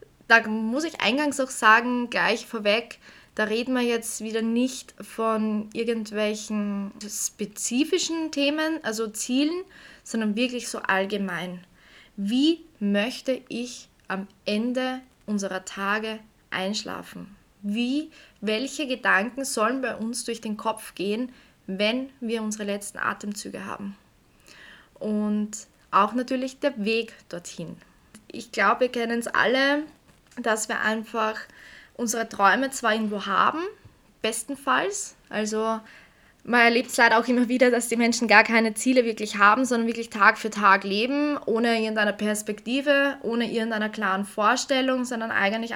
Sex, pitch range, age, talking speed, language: female, 205-245 Hz, 20-39, 130 wpm, German